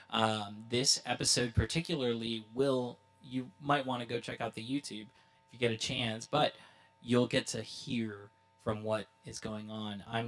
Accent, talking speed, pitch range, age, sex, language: American, 175 wpm, 110-125 Hz, 20-39, male, English